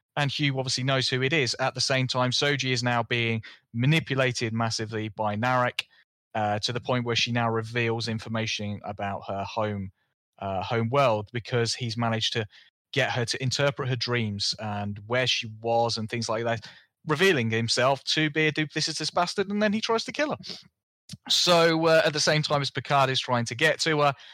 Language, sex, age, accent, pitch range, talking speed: English, male, 30-49, British, 115-145 Hz, 195 wpm